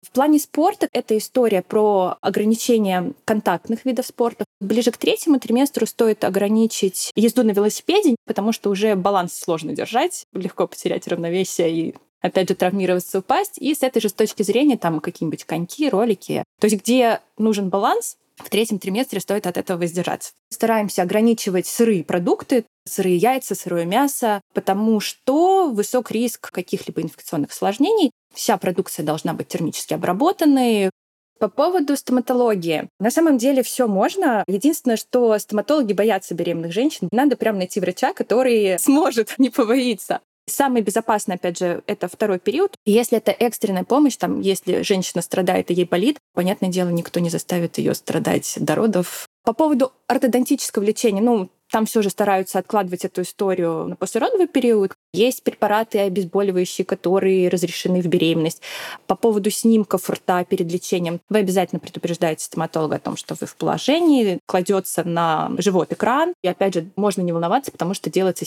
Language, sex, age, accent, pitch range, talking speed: Russian, female, 20-39, native, 180-240 Hz, 155 wpm